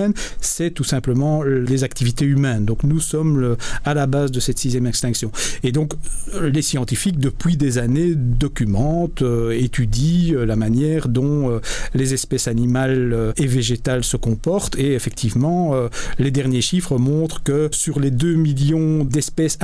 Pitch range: 120-155 Hz